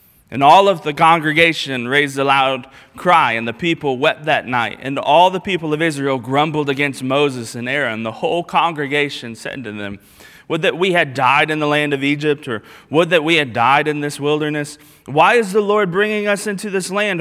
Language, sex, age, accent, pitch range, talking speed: English, male, 20-39, American, 115-150 Hz, 210 wpm